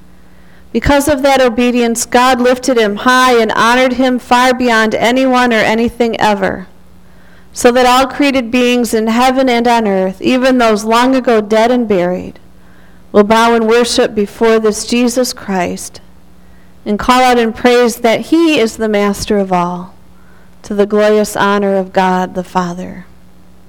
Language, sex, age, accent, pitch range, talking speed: English, female, 40-59, American, 190-245 Hz, 155 wpm